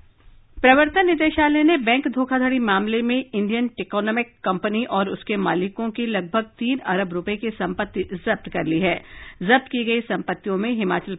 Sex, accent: female, native